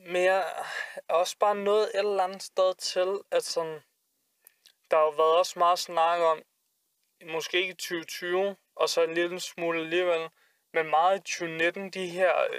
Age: 20-39